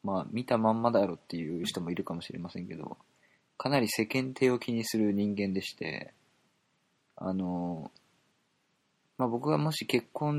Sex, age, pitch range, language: male, 20-39, 95-135 Hz, Japanese